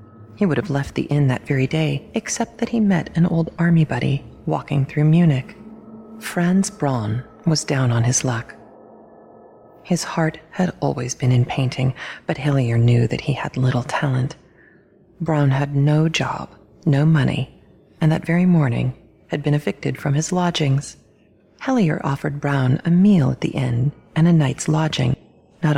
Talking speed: 165 wpm